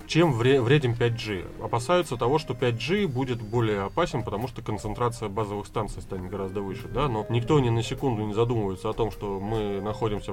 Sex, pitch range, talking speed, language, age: male, 105-125 Hz, 180 wpm, Russian, 20-39